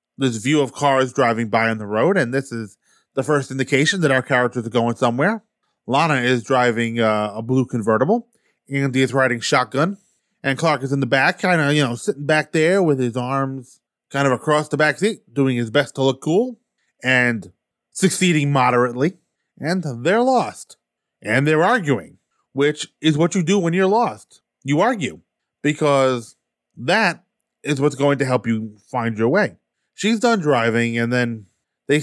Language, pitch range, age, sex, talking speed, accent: English, 115-150 Hz, 30-49, male, 180 wpm, American